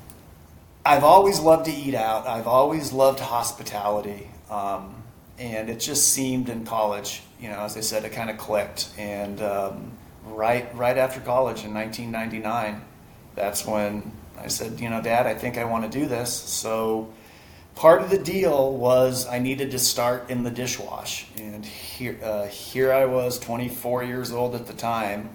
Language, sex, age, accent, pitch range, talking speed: English, male, 30-49, American, 105-120 Hz, 175 wpm